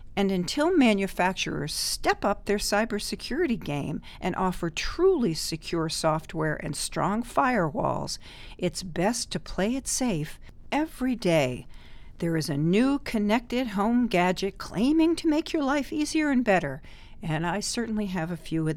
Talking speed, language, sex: 145 wpm, English, female